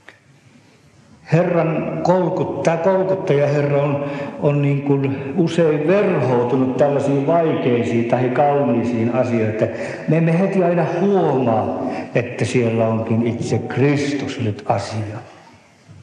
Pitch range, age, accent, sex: 115-140 Hz, 60-79, native, male